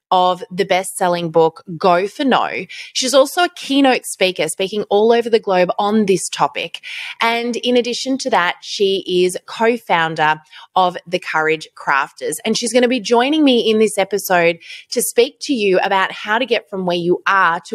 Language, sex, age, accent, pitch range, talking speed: English, female, 20-39, New Zealand, 175-245 Hz, 195 wpm